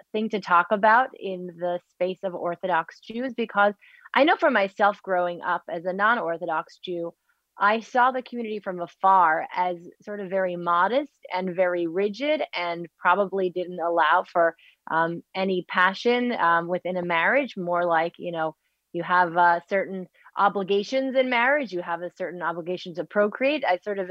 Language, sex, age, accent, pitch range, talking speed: English, female, 30-49, American, 175-205 Hz, 170 wpm